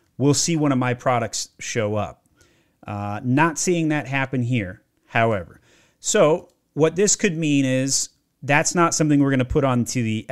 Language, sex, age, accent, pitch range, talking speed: English, male, 30-49, American, 115-150 Hz, 170 wpm